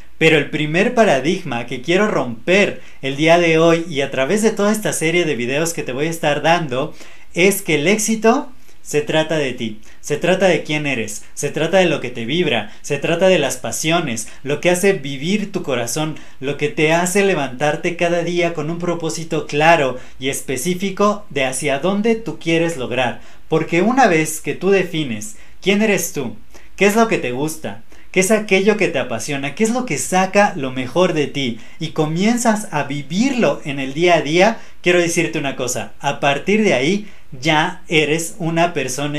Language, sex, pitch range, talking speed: Spanish, male, 140-180 Hz, 195 wpm